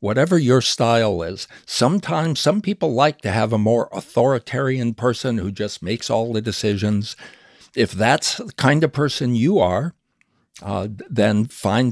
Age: 60-79